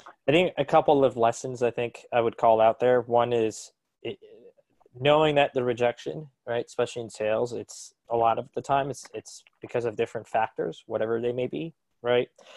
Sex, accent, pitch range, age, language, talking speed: male, American, 110-135 Hz, 20-39, English, 195 wpm